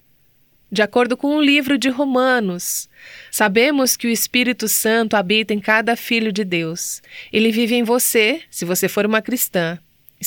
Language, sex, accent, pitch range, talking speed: Portuguese, female, Brazilian, 185-250 Hz, 170 wpm